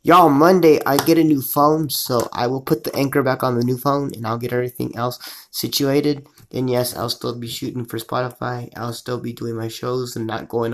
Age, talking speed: 20-39, 230 wpm